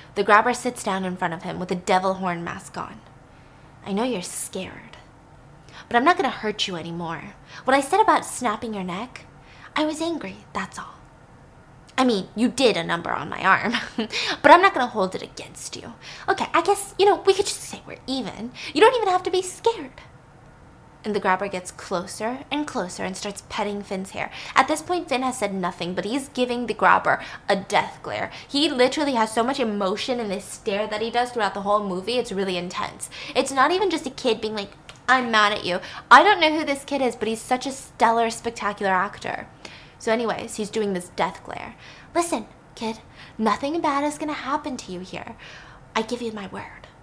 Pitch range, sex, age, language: 185-265 Hz, female, 10-29, English